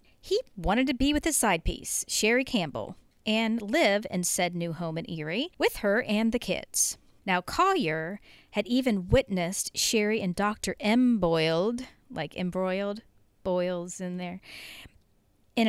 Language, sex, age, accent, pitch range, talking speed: English, female, 40-59, American, 185-260 Hz, 150 wpm